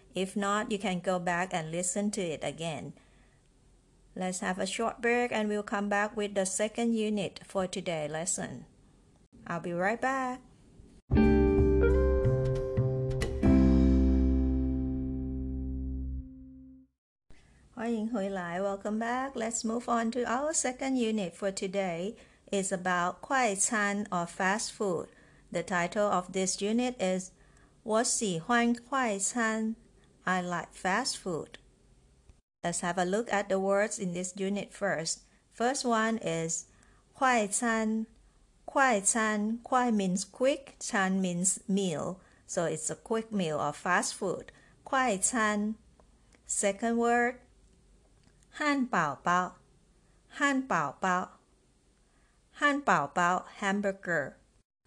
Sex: female